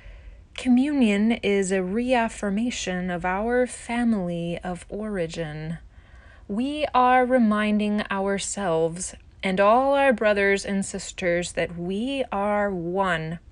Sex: female